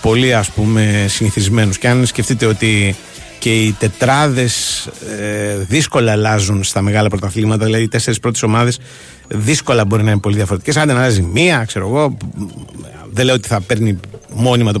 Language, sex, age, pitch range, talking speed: Greek, male, 30-49, 100-125 Hz, 160 wpm